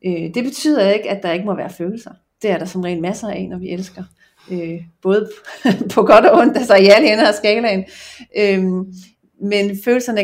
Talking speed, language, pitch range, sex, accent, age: 190 wpm, Danish, 180-210 Hz, female, native, 40-59